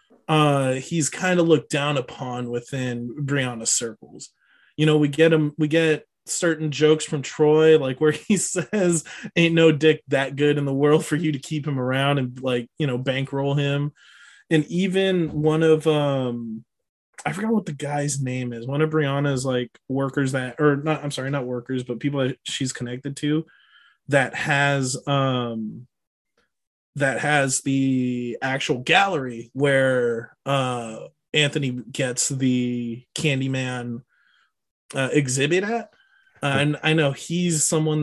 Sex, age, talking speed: male, 20-39, 155 wpm